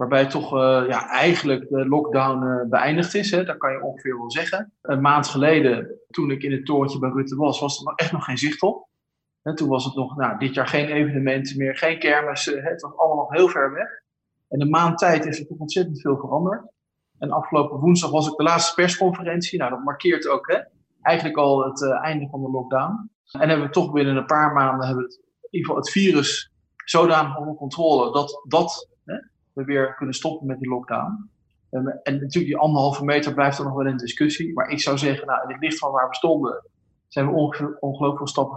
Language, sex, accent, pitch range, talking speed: English, male, Dutch, 135-160 Hz, 225 wpm